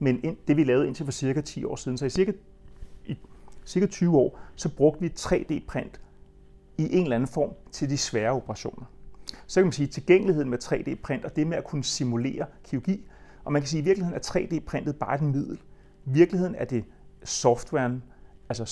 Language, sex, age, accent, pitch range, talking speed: Danish, male, 30-49, native, 125-175 Hz, 200 wpm